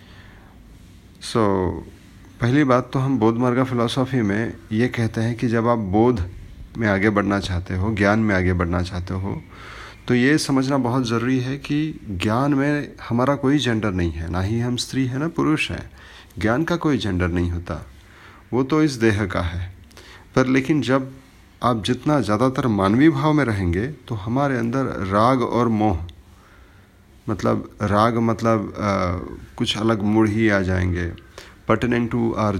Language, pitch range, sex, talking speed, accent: Hindi, 95-125 Hz, male, 165 wpm, native